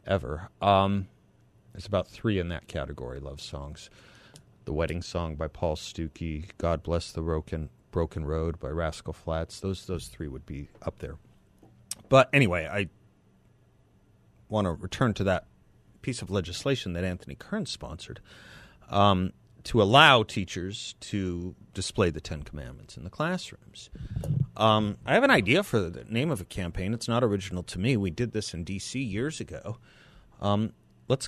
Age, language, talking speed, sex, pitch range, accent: 30-49, English, 160 wpm, male, 85-120 Hz, American